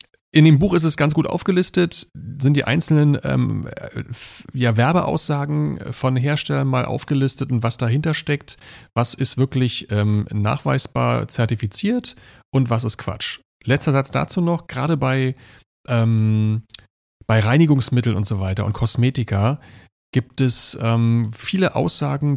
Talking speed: 130 wpm